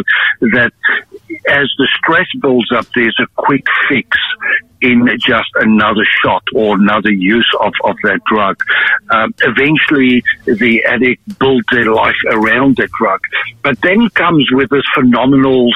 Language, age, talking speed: English, 60-79, 145 wpm